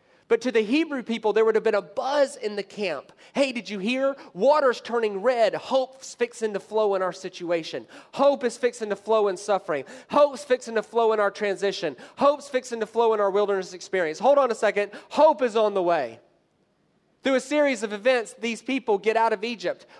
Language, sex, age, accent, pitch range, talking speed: English, male, 30-49, American, 205-255 Hz, 210 wpm